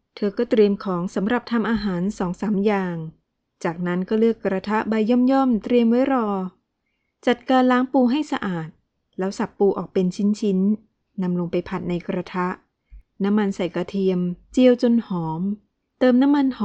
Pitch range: 180-225 Hz